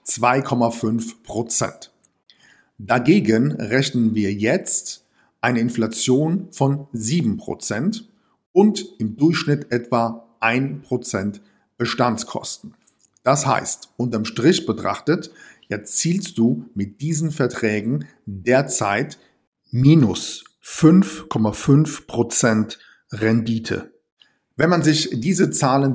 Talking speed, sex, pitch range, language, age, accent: 80 wpm, male, 110-140 Hz, German, 50-69, German